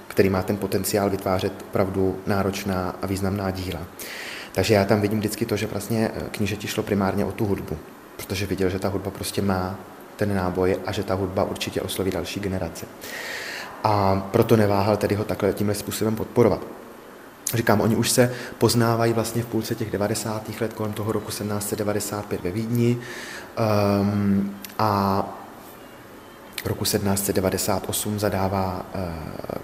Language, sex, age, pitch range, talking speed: Czech, male, 20-39, 95-110 Hz, 140 wpm